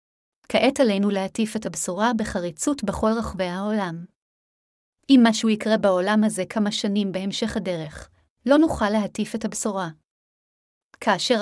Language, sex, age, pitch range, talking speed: Hebrew, female, 30-49, 195-230 Hz, 125 wpm